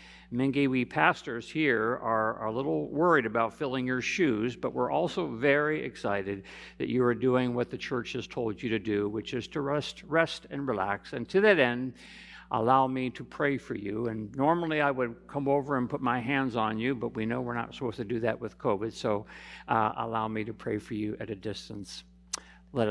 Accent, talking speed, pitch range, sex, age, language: American, 215 wpm, 100-135 Hz, male, 50-69, English